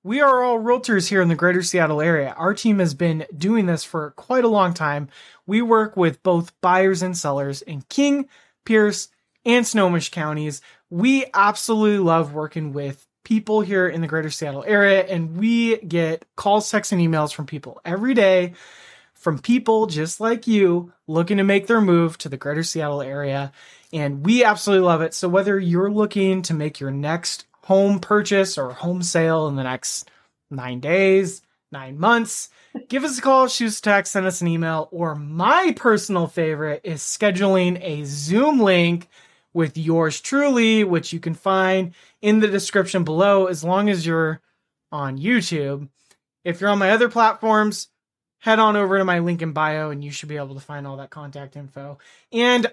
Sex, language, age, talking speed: male, English, 20-39, 180 wpm